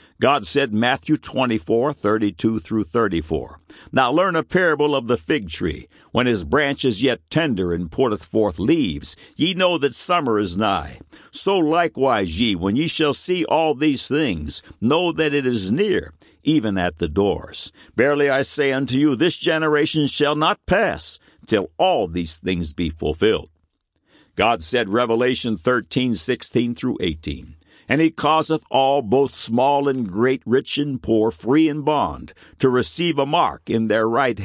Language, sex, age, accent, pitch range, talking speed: English, male, 60-79, American, 105-155 Hz, 170 wpm